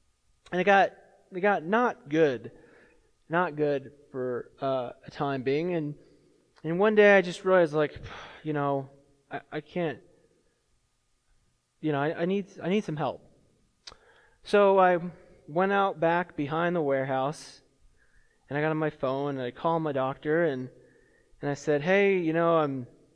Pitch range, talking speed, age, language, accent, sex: 145-185 Hz, 165 wpm, 20-39, English, American, male